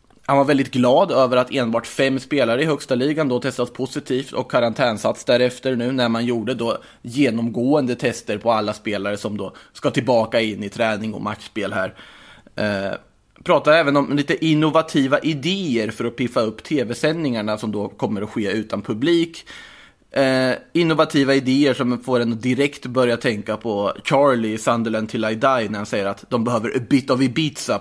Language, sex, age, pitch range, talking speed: Swedish, male, 20-39, 110-135 Hz, 175 wpm